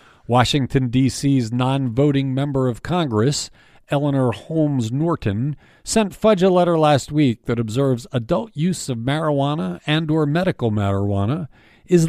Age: 50-69